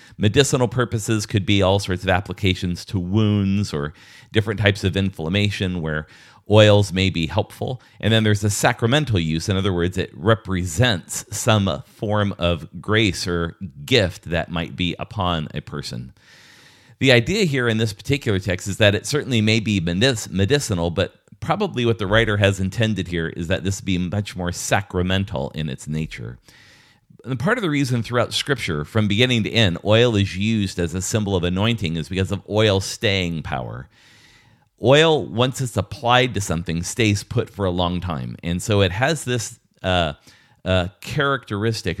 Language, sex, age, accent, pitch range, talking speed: English, male, 40-59, American, 90-115 Hz, 170 wpm